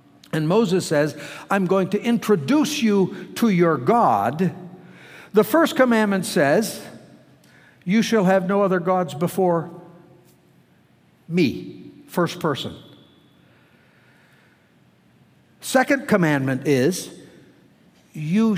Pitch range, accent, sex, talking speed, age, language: 150-200 Hz, American, male, 95 wpm, 60-79, English